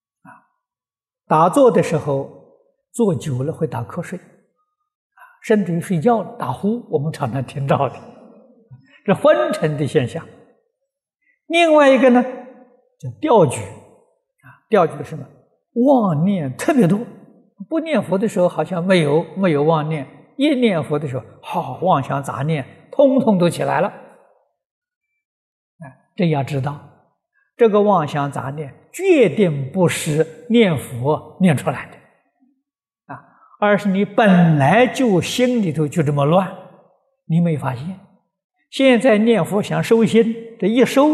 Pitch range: 155-255 Hz